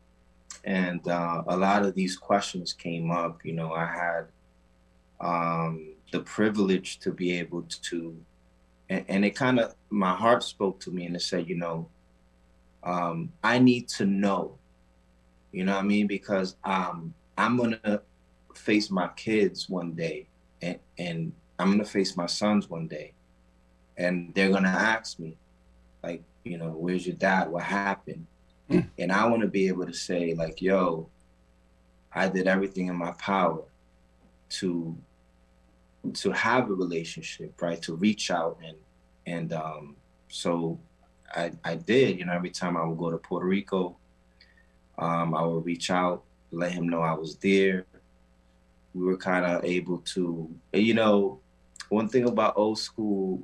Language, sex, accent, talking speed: English, male, American, 165 wpm